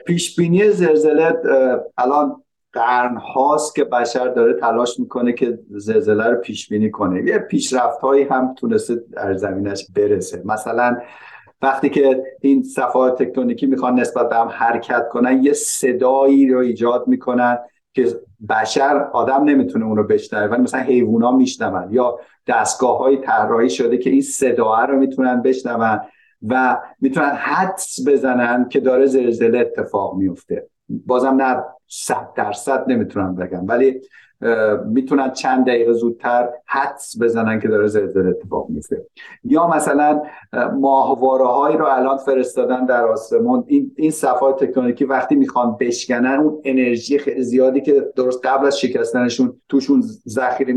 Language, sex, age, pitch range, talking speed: Persian, male, 50-69, 120-140 Hz, 135 wpm